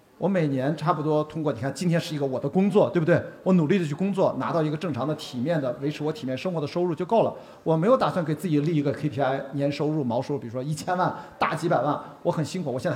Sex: male